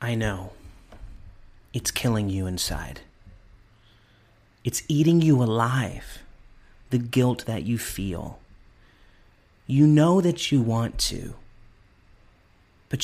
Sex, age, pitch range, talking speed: male, 30-49, 105-135 Hz, 100 wpm